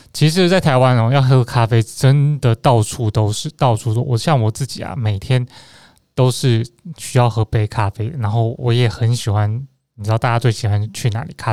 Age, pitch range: 20-39, 115-145 Hz